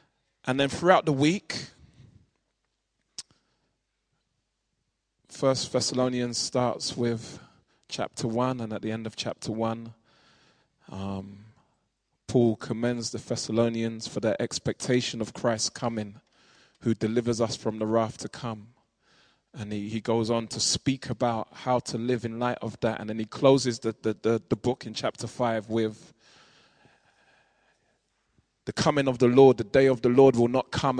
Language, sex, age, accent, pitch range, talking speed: English, male, 20-39, British, 115-135 Hz, 150 wpm